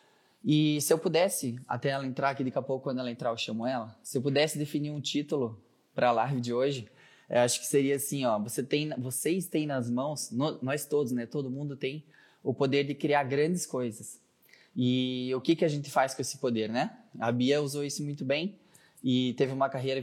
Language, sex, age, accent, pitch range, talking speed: Portuguese, male, 20-39, Brazilian, 120-145 Hz, 220 wpm